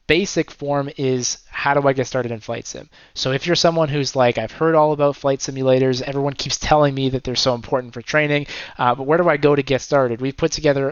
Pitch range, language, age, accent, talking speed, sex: 125-145 Hz, English, 20-39, American, 245 wpm, male